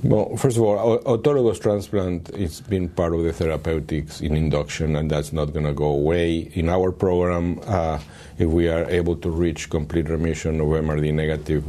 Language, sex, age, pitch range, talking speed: English, male, 50-69, 75-90 Hz, 185 wpm